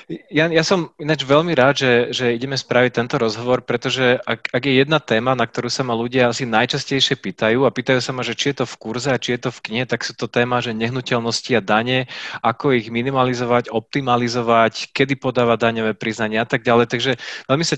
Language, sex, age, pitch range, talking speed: Slovak, male, 20-39, 115-130 Hz, 215 wpm